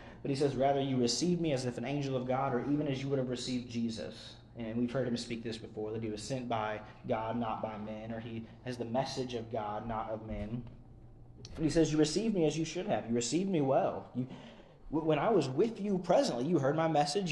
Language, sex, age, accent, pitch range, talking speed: English, male, 30-49, American, 120-165 Hz, 245 wpm